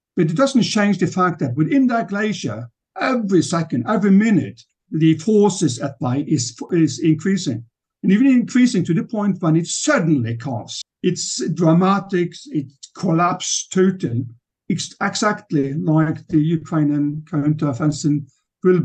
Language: English